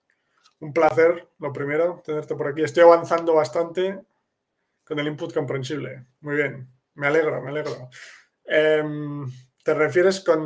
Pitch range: 140-160 Hz